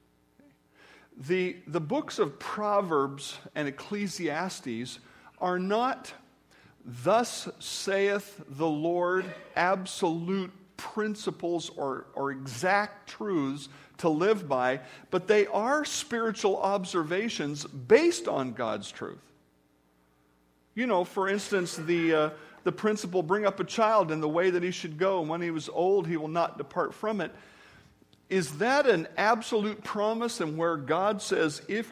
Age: 50-69